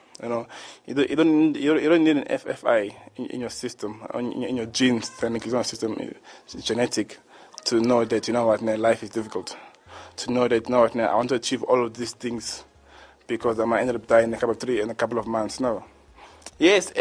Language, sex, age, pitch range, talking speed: English, male, 20-39, 110-130 Hz, 210 wpm